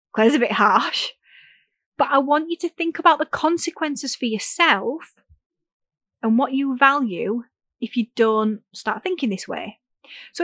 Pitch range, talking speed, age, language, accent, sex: 200-265 Hz, 160 wpm, 30-49, English, British, female